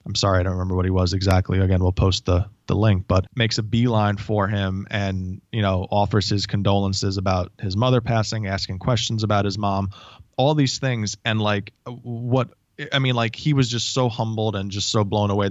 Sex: male